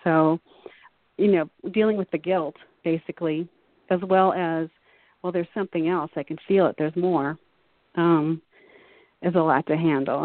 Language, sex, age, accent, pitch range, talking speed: English, female, 40-59, American, 165-200 Hz, 160 wpm